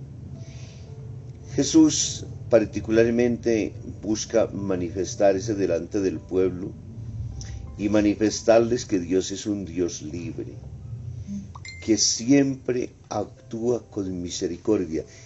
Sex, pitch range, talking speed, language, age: male, 95-115 Hz, 80 wpm, Spanish, 50-69